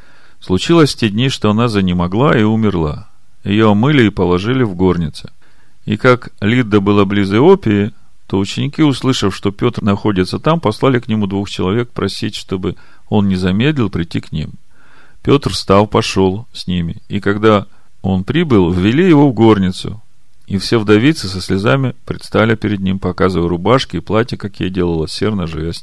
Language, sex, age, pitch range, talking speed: Russian, male, 40-59, 95-120 Hz, 165 wpm